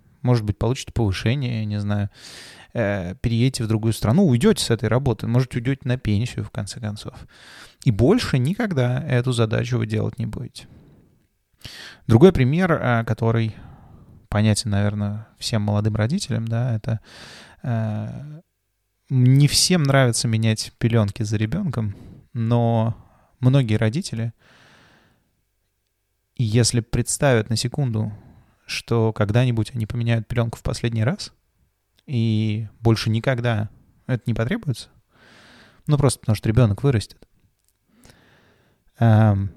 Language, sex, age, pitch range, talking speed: Russian, male, 20-39, 105-125 Hz, 115 wpm